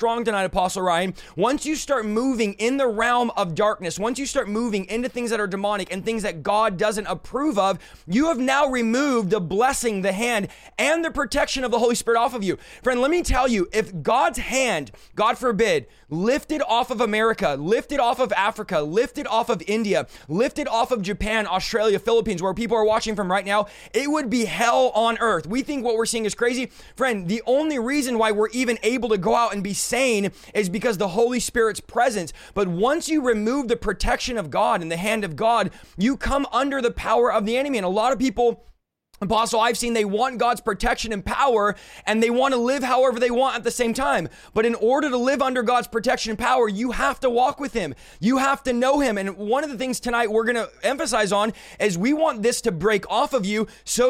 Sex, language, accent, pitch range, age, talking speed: male, English, American, 215-250 Hz, 20-39, 225 wpm